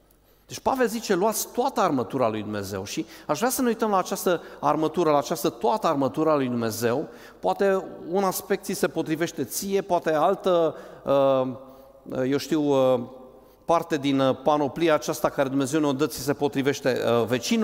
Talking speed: 150 wpm